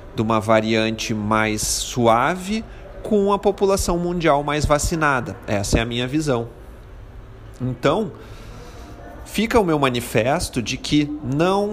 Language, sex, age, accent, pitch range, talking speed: Portuguese, male, 40-59, Brazilian, 105-135 Hz, 125 wpm